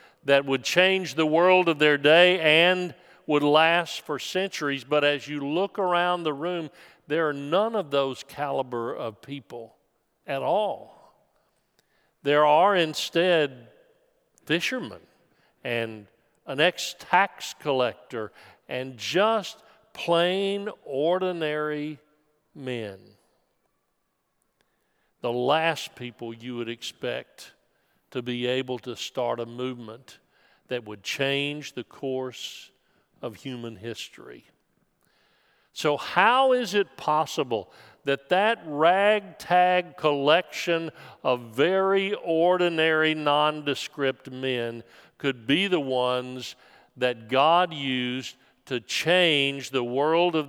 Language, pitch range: English, 125-170 Hz